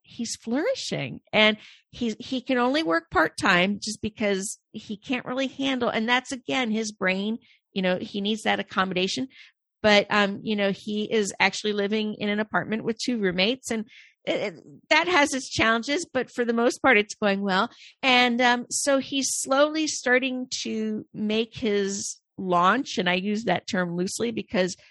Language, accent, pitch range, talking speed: English, American, 200-255 Hz, 165 wpm